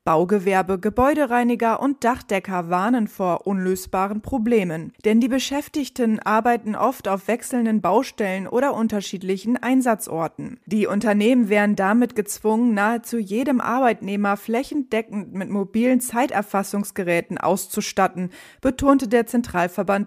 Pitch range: 195-245 Hz